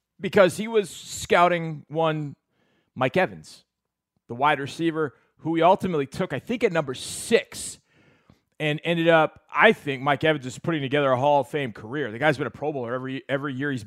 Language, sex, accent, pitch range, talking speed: English, male, American, 135-170 Hz, 190 wpm